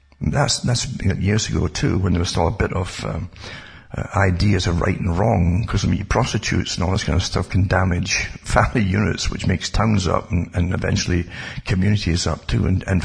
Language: English